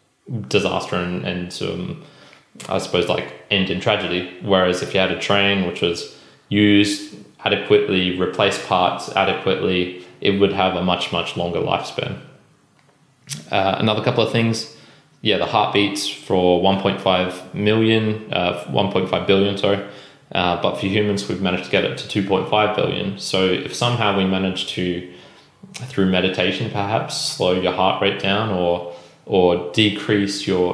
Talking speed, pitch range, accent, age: 150 wpm, 90-105 Hz, Australian, 20-39